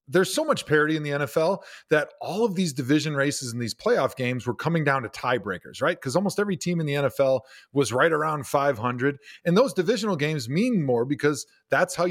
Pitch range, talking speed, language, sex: 140-200 Hz, 215 wpm, English, male